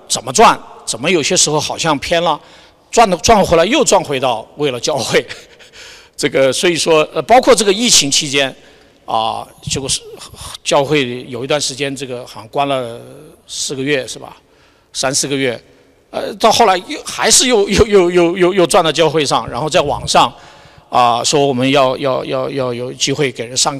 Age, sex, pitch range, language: 50-69, male, 130-170 Hz, Chinese